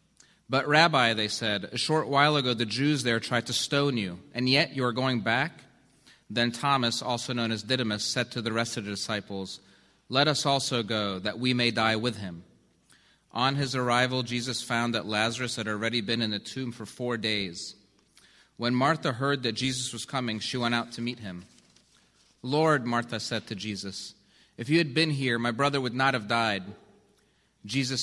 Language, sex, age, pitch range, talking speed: English, male, 30-49, 110-130 Hz, 195 wpm